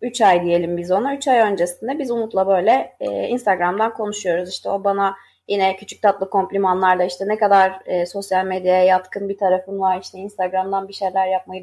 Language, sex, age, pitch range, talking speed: Turkish, female, 30-49, 185-265 Hz, 175 wpm